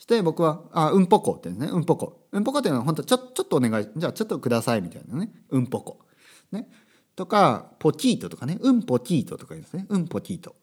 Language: Japanese